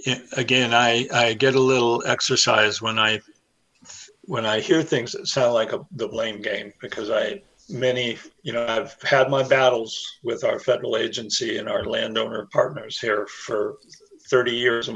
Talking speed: 170 wpm